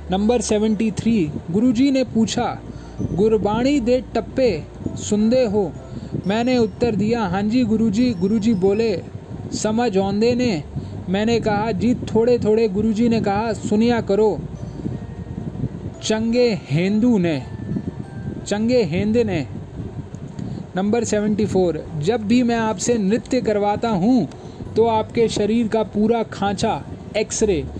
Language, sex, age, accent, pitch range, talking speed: Hindi, male, 20-39, native, 200-235 Hz, 120 wpm